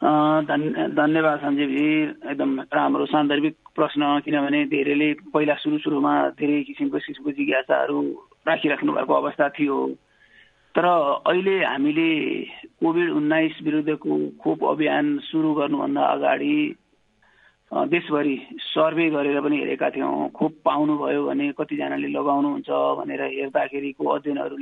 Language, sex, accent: English, male, Indian